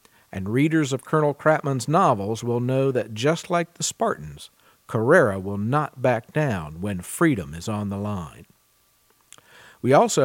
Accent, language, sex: American, English, male